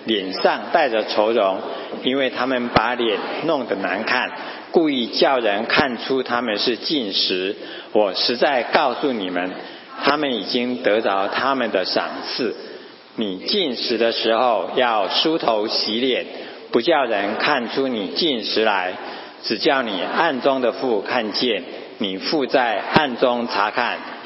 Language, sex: English, male